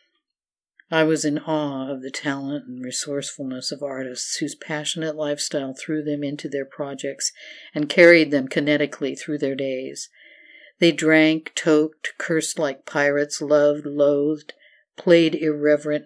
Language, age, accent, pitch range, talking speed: English, 50-69, American, 140-160 Hz, 135 wpm